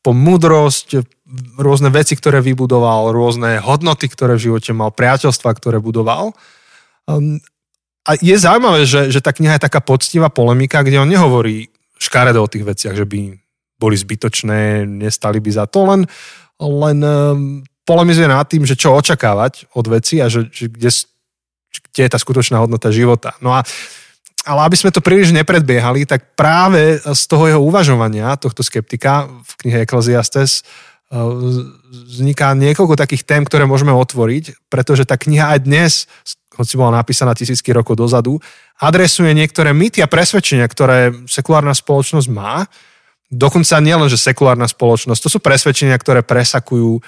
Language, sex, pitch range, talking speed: Slovak, male, 120-150 Hz, 150 wpm